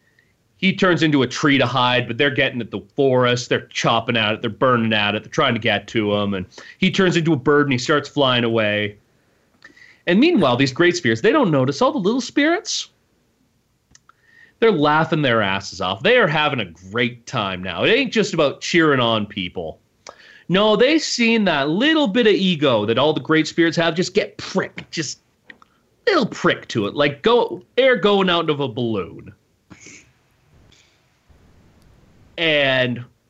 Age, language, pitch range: 30-49, English, 115-180 Hz